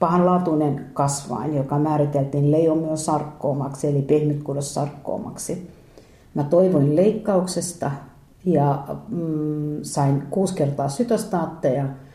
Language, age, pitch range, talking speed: Finnish, 50-69, 140-170 Hz, 95 wpm